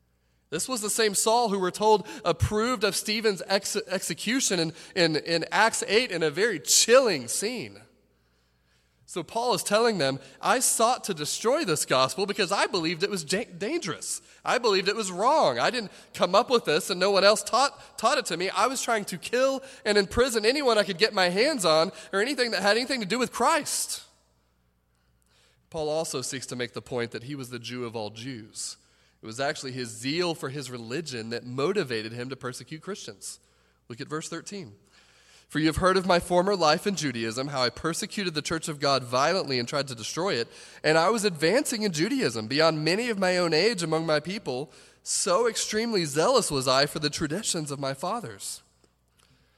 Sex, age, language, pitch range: male, 30-49, English, 125-205 Hz